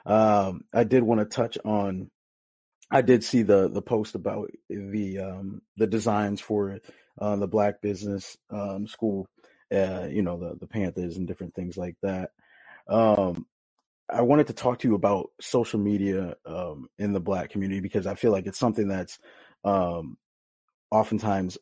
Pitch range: 95-105 Hz